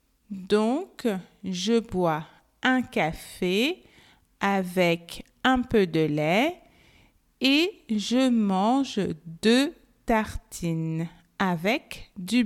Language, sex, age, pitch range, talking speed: French, female, 50-69, 190-275 Hz, 80 wpm